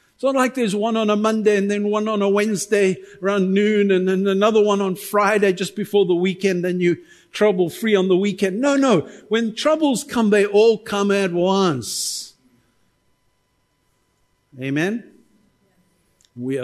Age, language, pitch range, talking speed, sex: 50-69, English, 120-200 Hz, 160 wpm, male